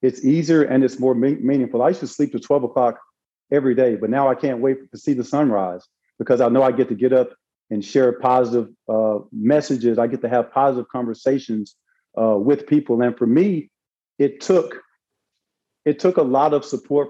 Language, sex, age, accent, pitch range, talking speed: English, male, 40-59, American, 115-135 Hz, 200 wpm